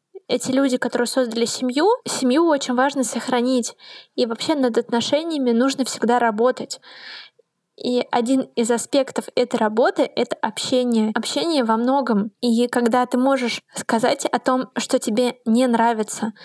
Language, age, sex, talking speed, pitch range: Russian, 20-39, female, 140 wpm, 235-260 Hz